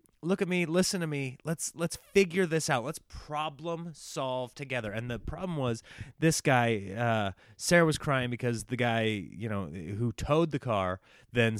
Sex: male